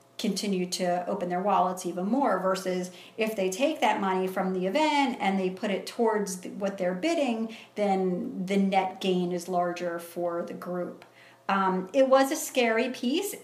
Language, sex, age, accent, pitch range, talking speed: English, female, 40-59, American, 190-235 Hz, 175 wpm